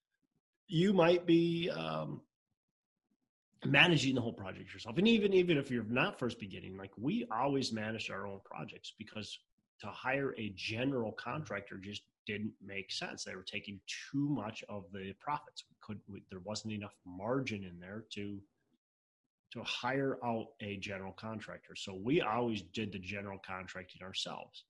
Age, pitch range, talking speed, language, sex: 30-49, 100-130 Hz, 160 wpm, English, male